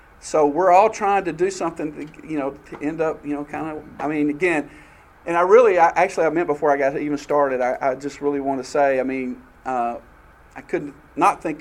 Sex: male